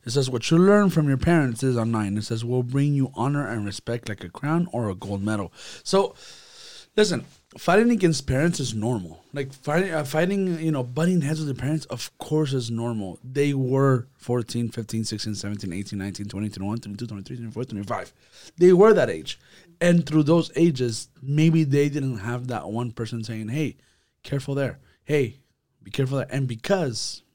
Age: 30-49